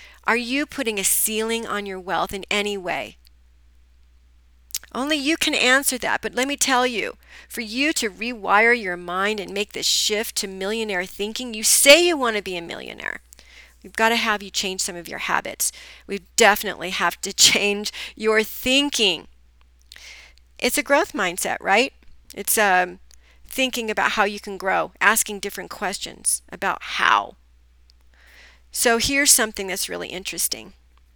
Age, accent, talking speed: 40-59, American, 160 wpm